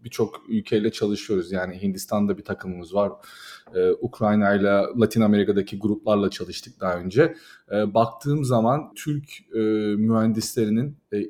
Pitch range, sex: 110-135 Hz, male